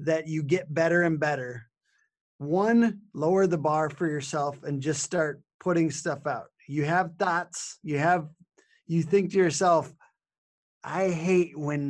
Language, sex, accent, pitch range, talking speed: English, male, American, 150-185 Hz, 150 wpm